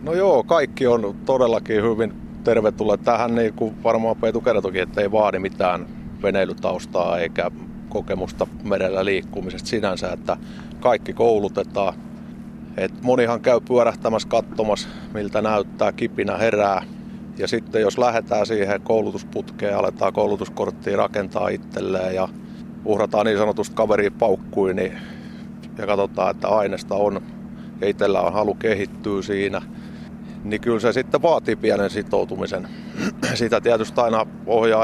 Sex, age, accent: male, 30-49, native